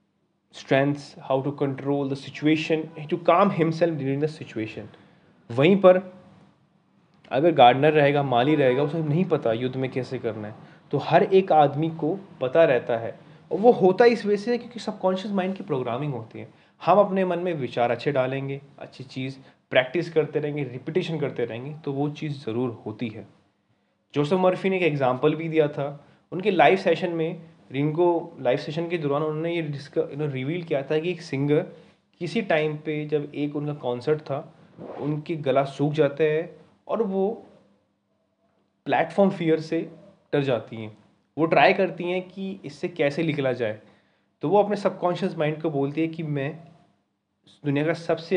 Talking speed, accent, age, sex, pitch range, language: 170 wpm, native, 20-39, male, 135-175 Hz, Hindi